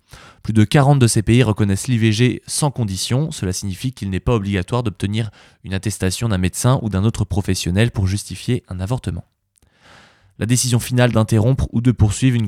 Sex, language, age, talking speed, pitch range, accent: male, French, 20-39, 180 wpm, 95-125 Hz, French